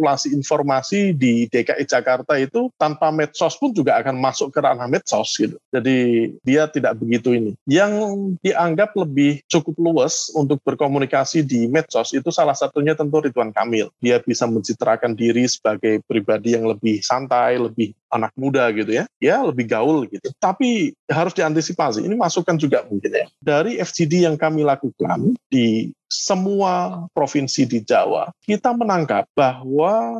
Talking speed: 150 wpm